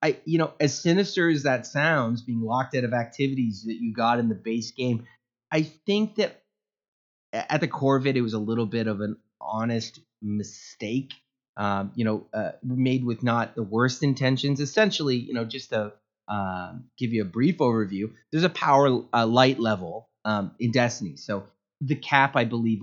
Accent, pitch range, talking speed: American, 110-140 Hz, 190 wpm